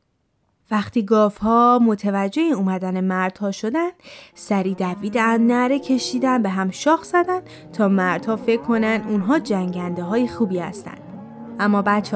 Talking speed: 135 wpm